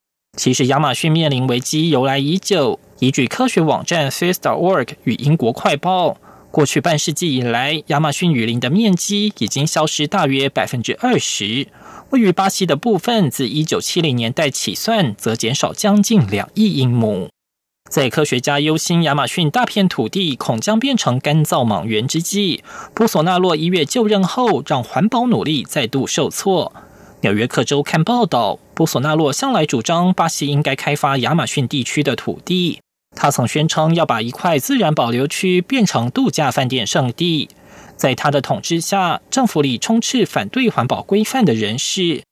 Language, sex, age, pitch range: German, male, 20-39, 135-190 Hz